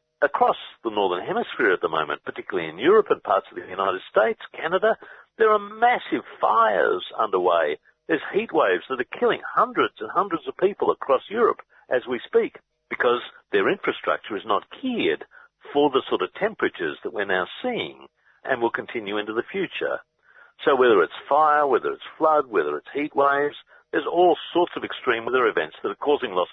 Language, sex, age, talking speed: English, male, 60-79, 185 wpm